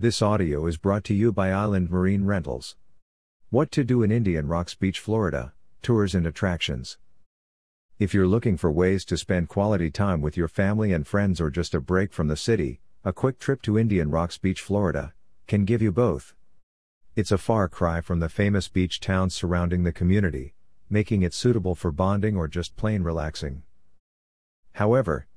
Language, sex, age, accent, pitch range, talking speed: English, male, 50-69, American, 85-105 Hz, 180 wpm